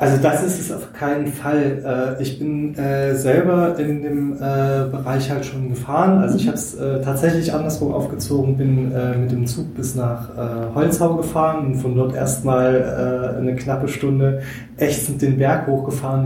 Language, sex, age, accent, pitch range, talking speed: German, male, 20-39, German, 120-135 Hz, 155 wpm